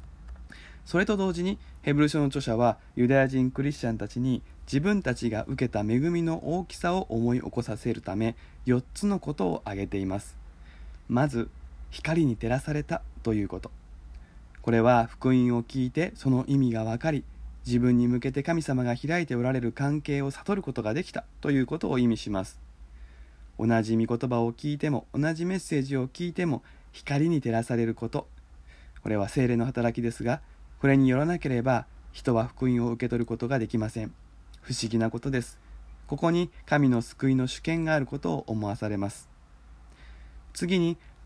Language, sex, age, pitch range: Japanese, male, 20-39, 105-140 Hz